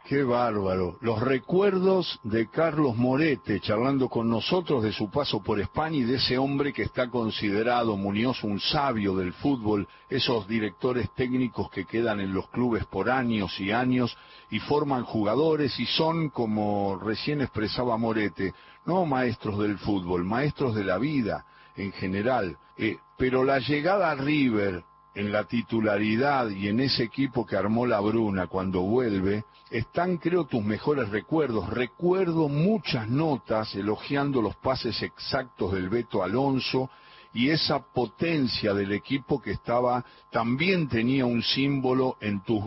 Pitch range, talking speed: 105-135 Hz, 150 wpm